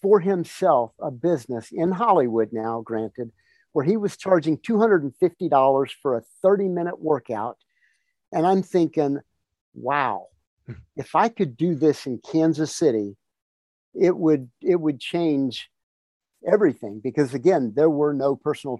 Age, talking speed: 50-69, 130 wpm